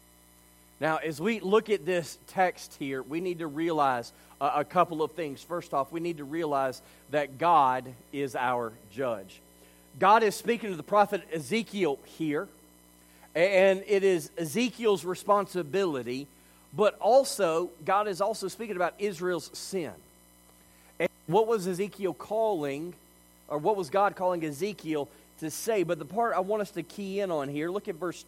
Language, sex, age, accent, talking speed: English, male, 40-59, American, 160 wpm